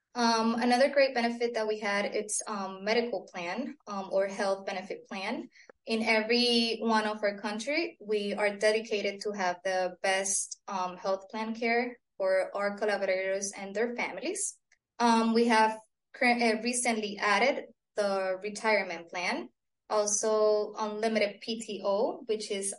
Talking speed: 140 wpm